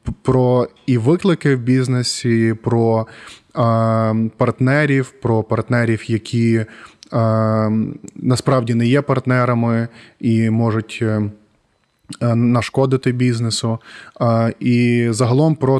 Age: 20-39